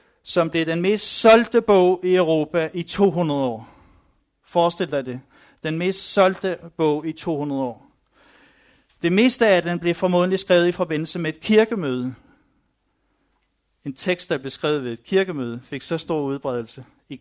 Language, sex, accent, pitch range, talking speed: Danish, male, native, 145-180 Hz, 155 wpm